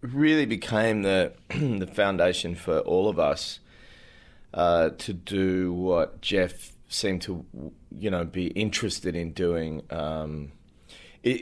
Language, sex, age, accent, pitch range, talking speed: English, male, 30-49, Australian, 80-95 Hz, 120 wpm